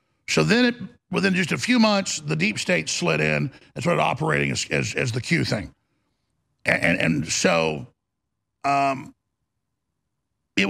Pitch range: 170-210 Hz